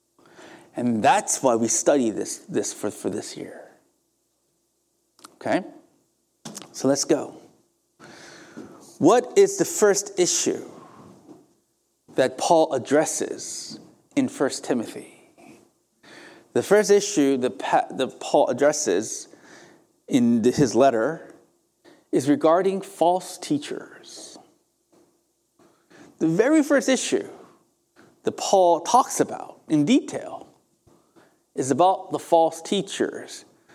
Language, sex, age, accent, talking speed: English, male, 30-49, American, 100 wpm